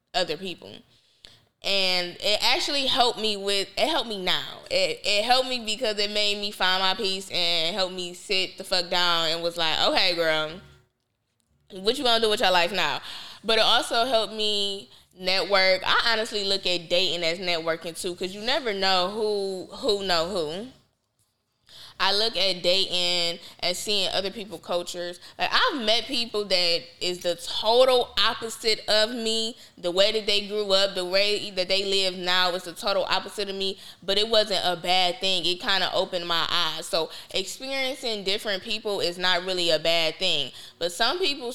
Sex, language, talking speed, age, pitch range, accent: female, English, 185 wpm, 10-29, 180-215 Hz, American